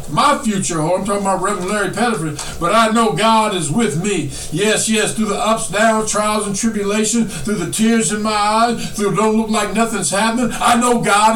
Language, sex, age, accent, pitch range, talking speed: English, male, 50-69, American, 175-235 Hz, 210 wpm